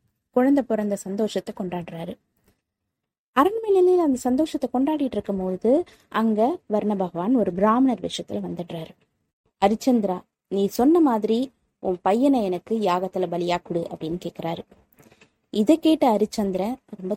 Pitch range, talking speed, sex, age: 190-270 Hz, 110 wpm, female, 20-39